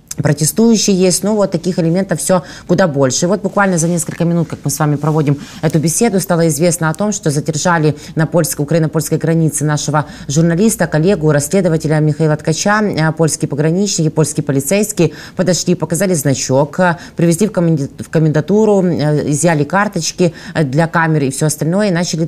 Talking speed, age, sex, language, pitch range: 155 wpm, 20-39, female, Ukrainian, 150-180 Hz